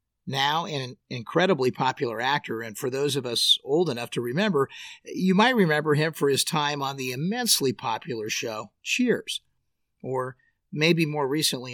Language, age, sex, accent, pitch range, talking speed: English, 50-69, male, American, 125-185 Hz, 160 wpm